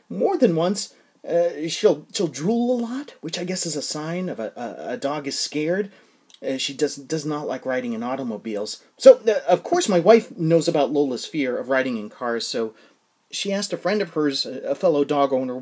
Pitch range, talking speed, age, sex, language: 150-245 Hz, 215 wpm, 30-49, male, English